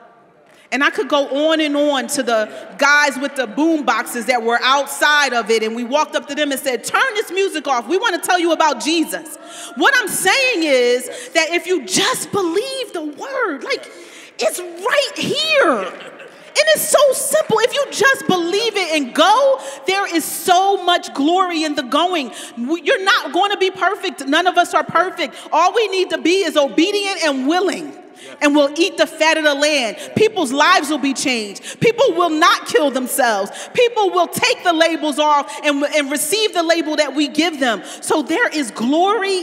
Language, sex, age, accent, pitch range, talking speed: English, female, 40-59, American, 285-370 Hz, 195 wpm